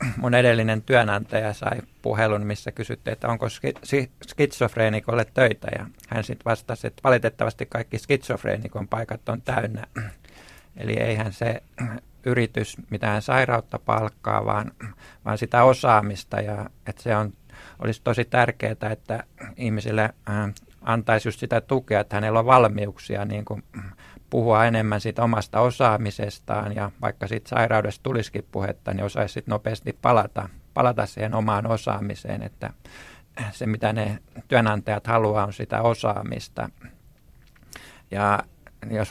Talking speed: 125 wpm